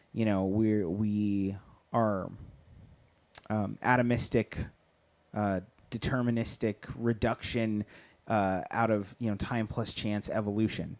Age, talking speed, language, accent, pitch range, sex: 30-49, 105 wpm, English, American, 100-125 Hz, male